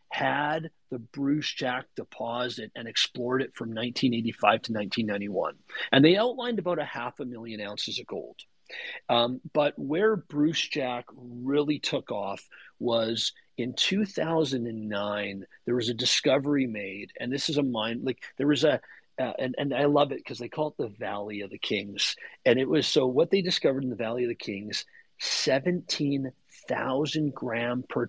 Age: 40-59